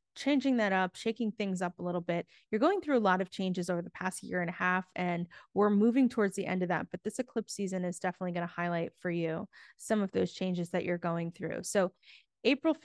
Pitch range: 180-220 Hz